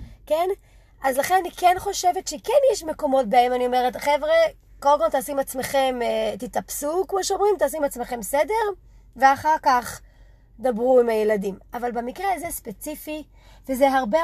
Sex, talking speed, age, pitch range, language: female, 145 wpm, 30-49, 245-330 Hz, Hebrew